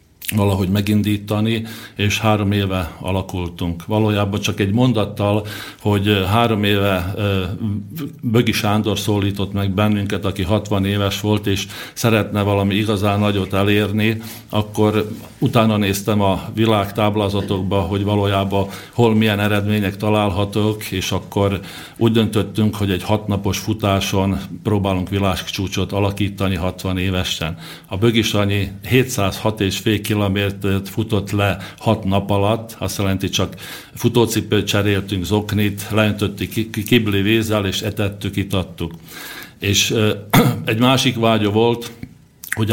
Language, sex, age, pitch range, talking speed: Slovak, male, 50-69, 95-110 Hz, 115 wpm